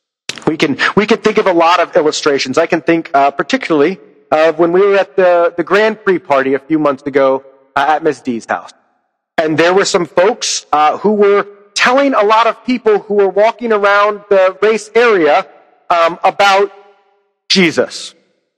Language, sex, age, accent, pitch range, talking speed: English, male, 40-59, American, 150-205 Hz, 185 wpm